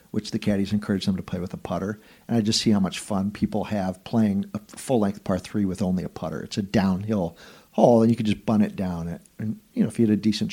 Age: 50-69